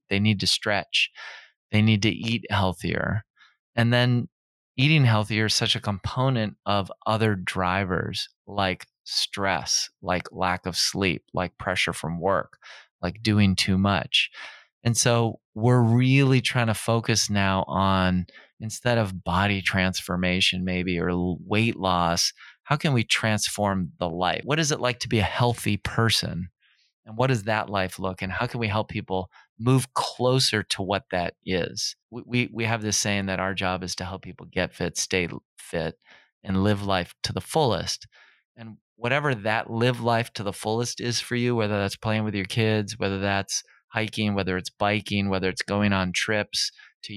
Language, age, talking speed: English, 30-49, 175 wpm